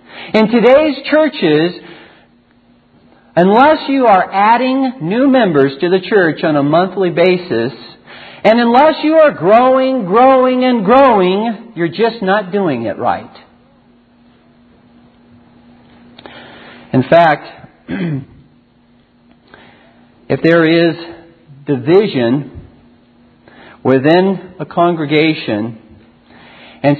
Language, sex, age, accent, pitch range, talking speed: English, male, 50-69, American, 120-195 Hz, 90 wpm